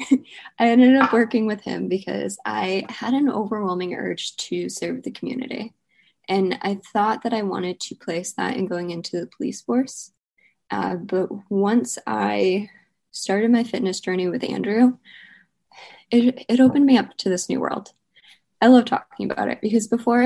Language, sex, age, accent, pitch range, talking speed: English, female, 20-39, American, 190-240 Hz, 170 wpm